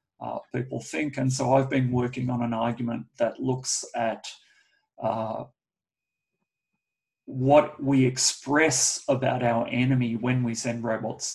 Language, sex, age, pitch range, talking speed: English, male, 40-59, 120-140 Hz, 130 wpm